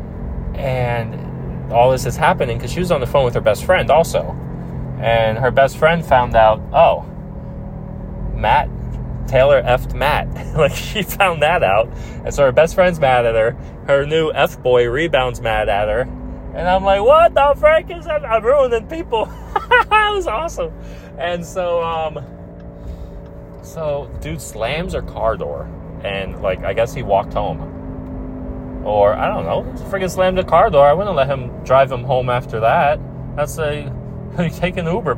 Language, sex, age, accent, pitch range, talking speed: English, male, 30-49, American, 120-185 Hz, 170 wpm